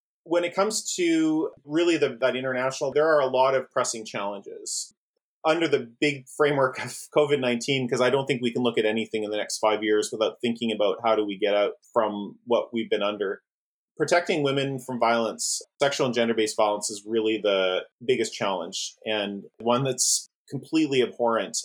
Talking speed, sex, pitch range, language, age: 180 wpm, male, 110-145 Hz, English, 30-49